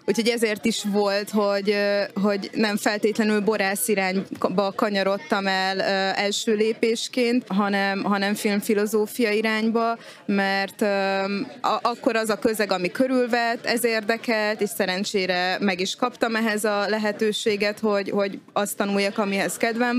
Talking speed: 125 wpm